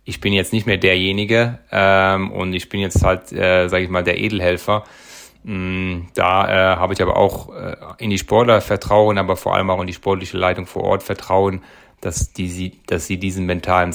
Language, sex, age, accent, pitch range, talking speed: German, male, 30-49, German, 90-110 Hz, 205 wpm